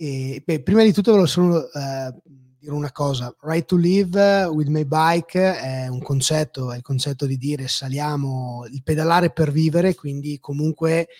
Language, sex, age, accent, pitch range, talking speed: Italian, male, 20-39, native, 130-160 Hz, 170 wpm